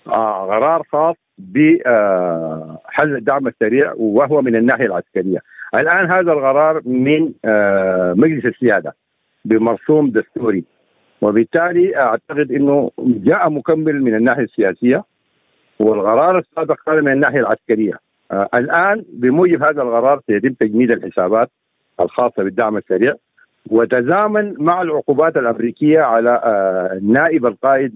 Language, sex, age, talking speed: Arabic, male, 50-69, 110 wpm